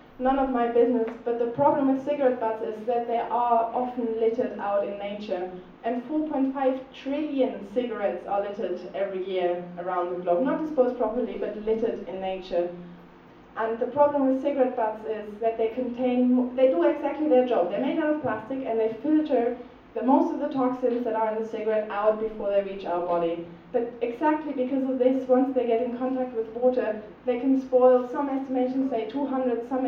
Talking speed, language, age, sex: 195 wpm, English, 20-39, female